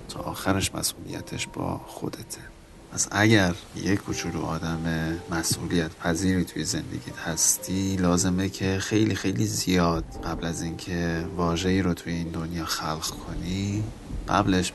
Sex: male